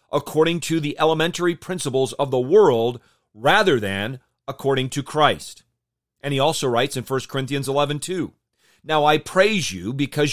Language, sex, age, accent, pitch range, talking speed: English, male, 40-59, American, 125-165 Hz, 150 wpm